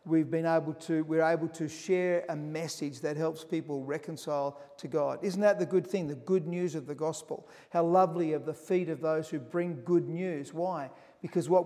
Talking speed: 210 wpm